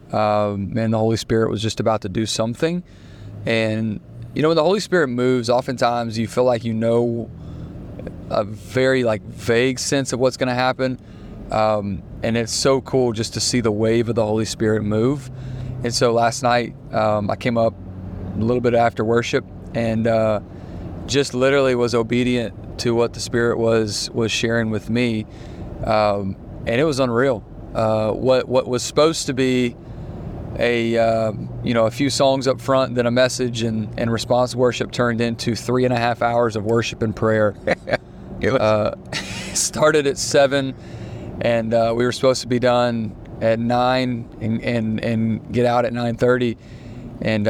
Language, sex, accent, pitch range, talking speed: English, male, American, 110-125 Hz, 180 wpm